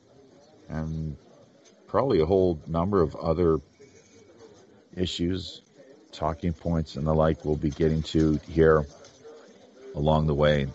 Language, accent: English, American